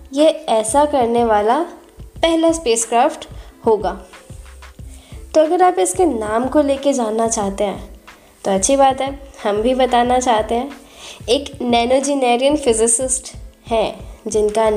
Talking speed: 125 wpm